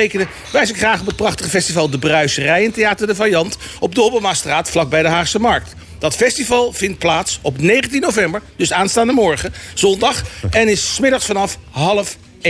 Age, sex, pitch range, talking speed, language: 50-69, male, 160-215 Hz, 170 wpm, Dutch